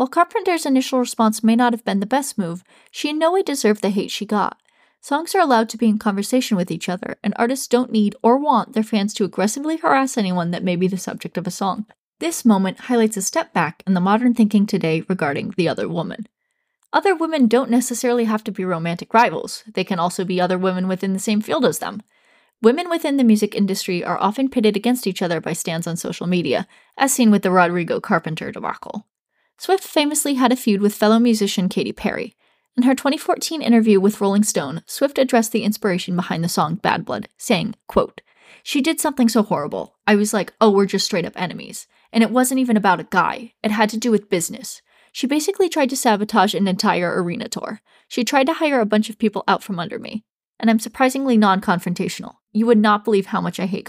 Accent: American